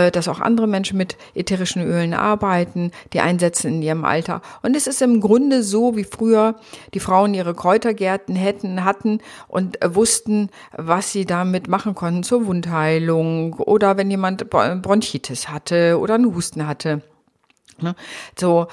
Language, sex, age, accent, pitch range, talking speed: German, female, 50-69, German, 170-210 Hz, 145 wpm